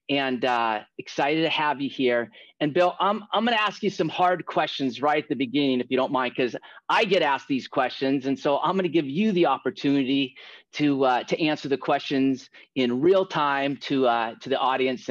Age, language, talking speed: 30-49, English, 220 wpm